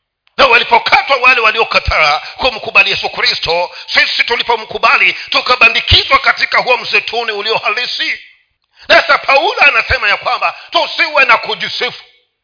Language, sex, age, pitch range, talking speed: Swahili, male, 50-69, 190-270 Hz, 105 wpm